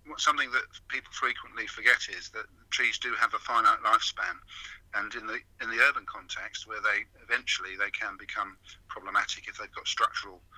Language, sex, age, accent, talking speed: English, male, 50-69, British, 180 wpm